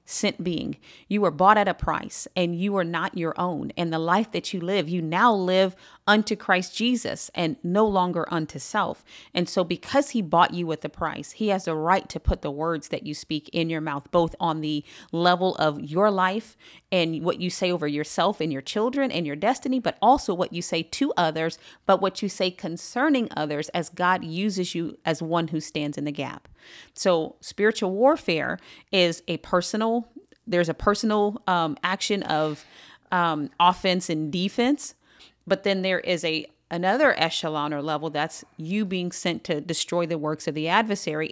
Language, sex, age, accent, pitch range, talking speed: English, female, 40-59, American, 160-200 Hz, 195 wpm